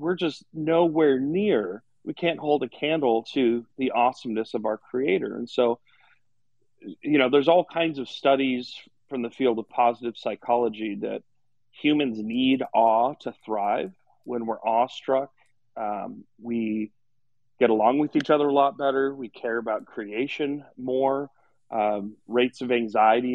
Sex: male